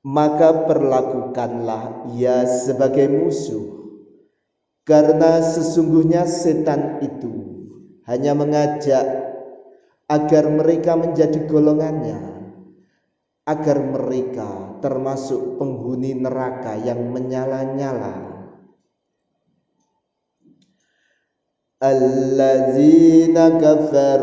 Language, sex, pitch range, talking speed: Indonesian, male, 130-160 Hz, 55 wpm